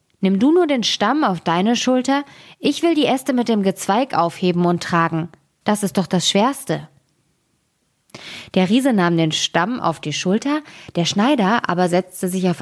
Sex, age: female, 20-39